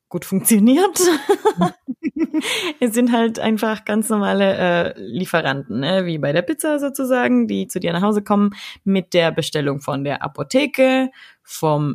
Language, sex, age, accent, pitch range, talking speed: German, female, 20-39, German, 170-220 Hz, 145 wpm